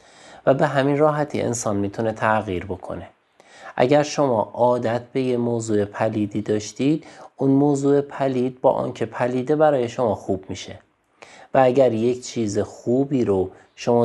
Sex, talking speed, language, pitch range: male, 140 wpm, Persian, 105-125 Hz